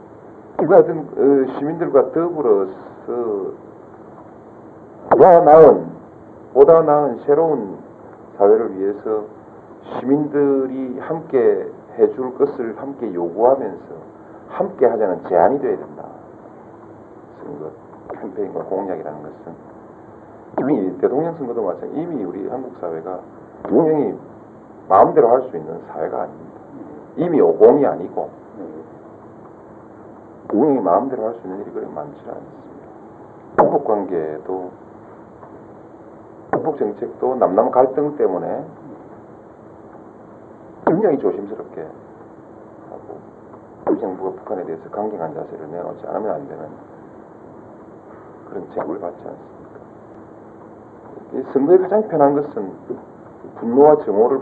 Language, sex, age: Korean, male, 40-59